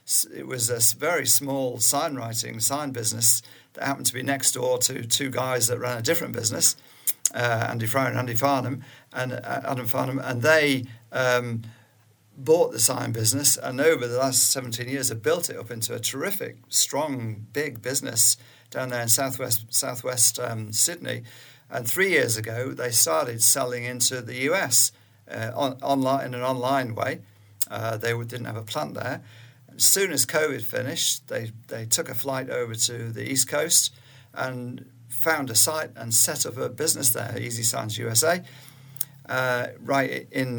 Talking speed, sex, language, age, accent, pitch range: 175 wpm, male, English, 50-69, British, 115-135 Hz